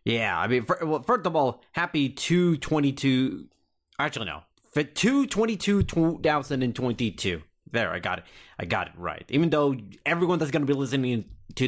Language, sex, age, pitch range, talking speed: English, male, 30-49, 115-180 Hz, 155 wpm